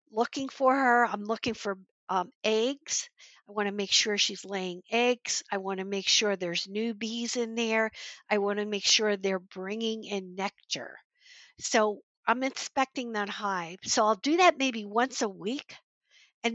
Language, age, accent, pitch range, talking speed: English, 50-69, American, 195-250 Hz, 180 wpm